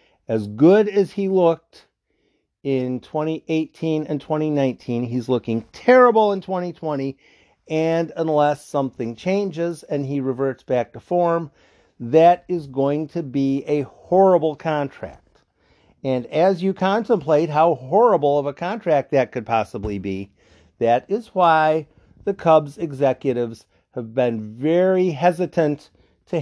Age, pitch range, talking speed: 50-69, 125-165 Hz, 125 wpm